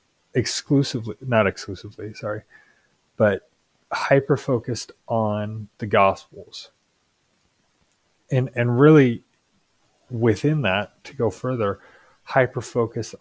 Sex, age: male, 30-49